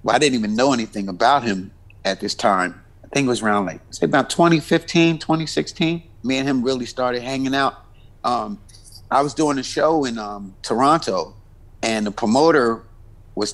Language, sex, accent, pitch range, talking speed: English, male, American, 110-175 Hz, 185 wpm